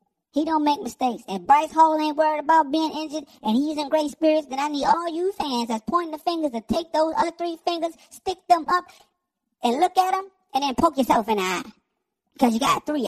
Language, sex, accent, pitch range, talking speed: English, male, American, 230-340 Hz, 235 wpm